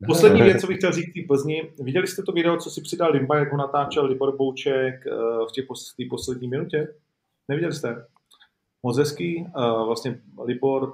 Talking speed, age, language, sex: 165 wpm, 40-59, Czech, male